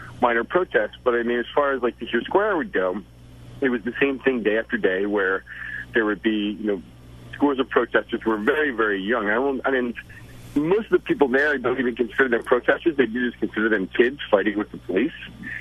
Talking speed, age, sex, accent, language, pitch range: 220 wpm, 40-59, male, American, English, 90-130 Hz